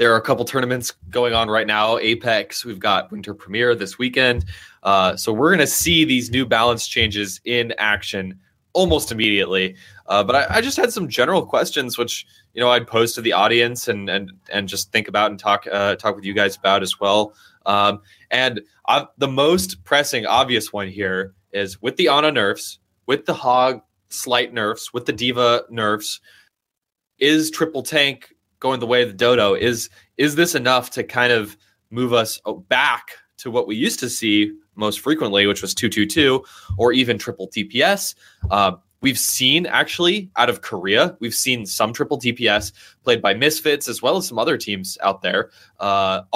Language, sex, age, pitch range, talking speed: English, male, 20-39, 100-125 Hz, 185 wpm